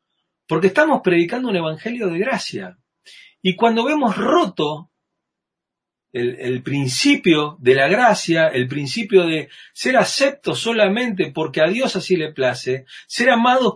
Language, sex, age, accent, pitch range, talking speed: Spanish, male, 40-59, Argentinian, 150-235 Hz, 135 wpm